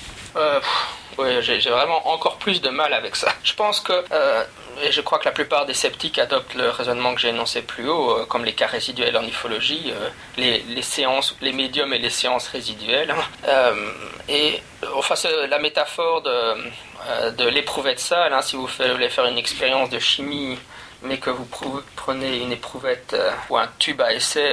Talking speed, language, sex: 205 wpm, French, male